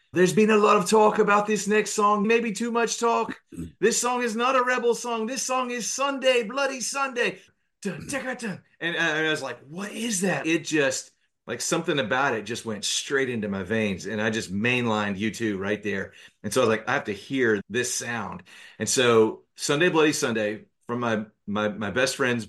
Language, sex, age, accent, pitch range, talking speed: English, male, 30-49, American, 105-160 Hz, 205 wpm